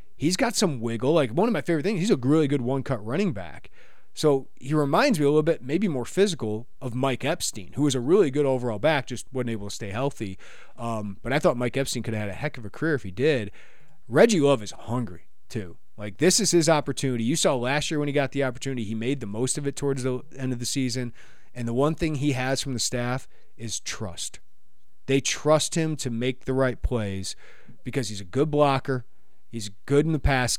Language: English